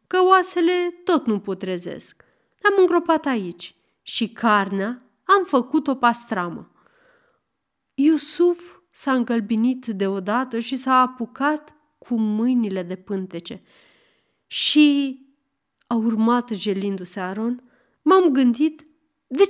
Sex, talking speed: female, 105 wpm